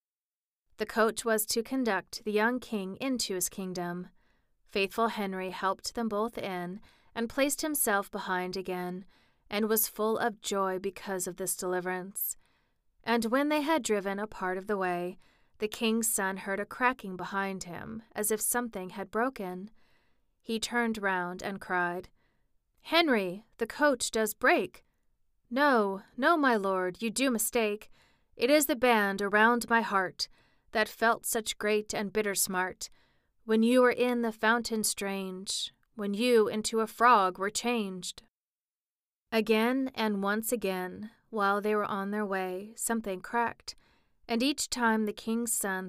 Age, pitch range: 30-49, 190-230 Hz